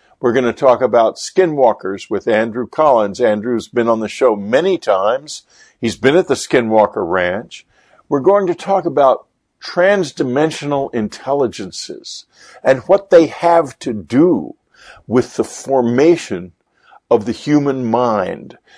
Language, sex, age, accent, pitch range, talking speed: English, male, 50-69, American, 120-195 Hz, 135 wpm